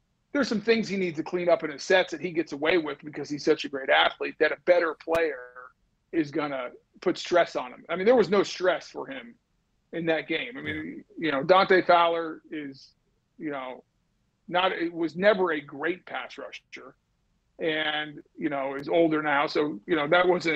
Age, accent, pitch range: 40-59, American, 150-180 Hz